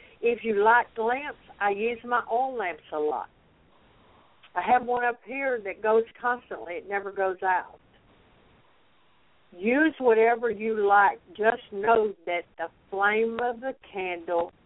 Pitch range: 180-230 Hz